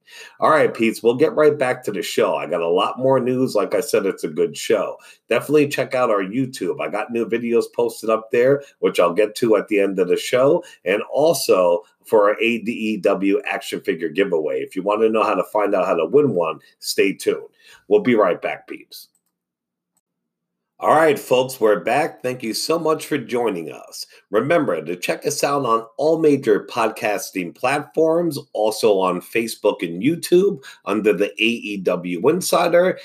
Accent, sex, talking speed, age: American, male, 190 wpm, 50-69